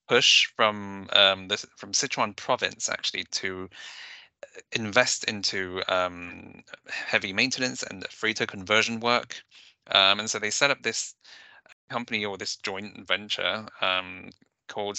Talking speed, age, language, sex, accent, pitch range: 130 wpm, 20-39, English, male, British, 95-110 Hz